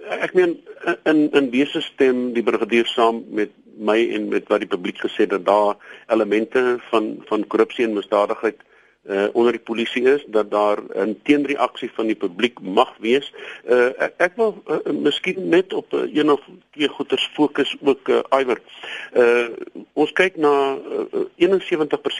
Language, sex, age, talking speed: English, male, 50-69, 160 wpm